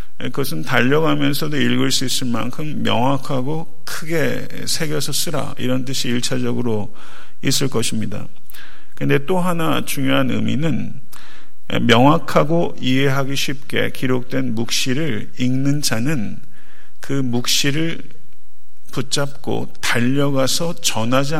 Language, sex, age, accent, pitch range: Korean, male, 50-69, native, 120-145 Hz